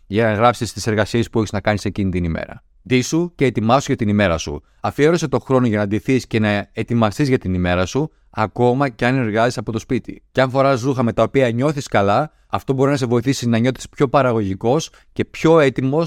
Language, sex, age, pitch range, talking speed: Greek, male, 30-49, 105-135 Hz, 230 wpm